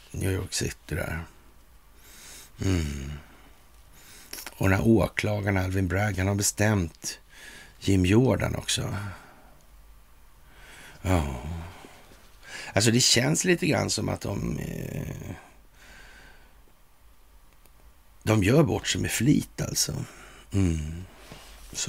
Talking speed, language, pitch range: 95 wpm, Swedish, 80-105 Hz